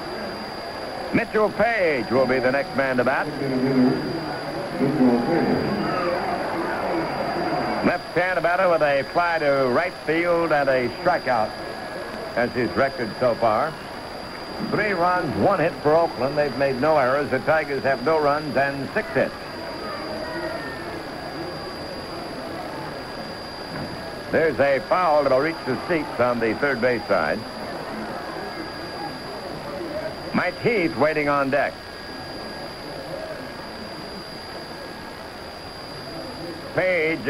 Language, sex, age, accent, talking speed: English, male, 60-79, American, 100 wpm